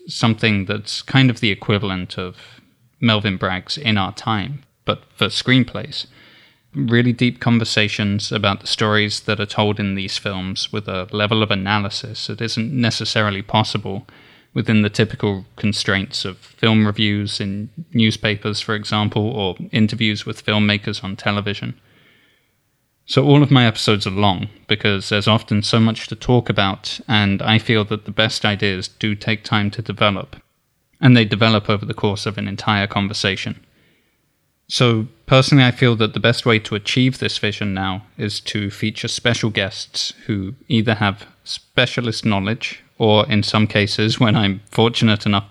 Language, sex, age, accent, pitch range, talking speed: English, male, 20-39, British, 105-115 Hz, 160 wpm